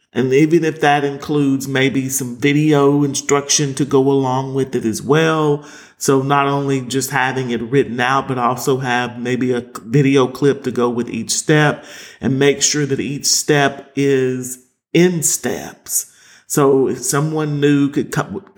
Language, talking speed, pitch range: English, 165 wpm, 125-150 Hz